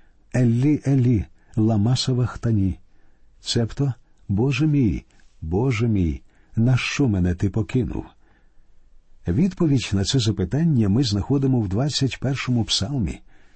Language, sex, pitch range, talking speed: Ukrainian, male, 100-140 Hz, 100 wpm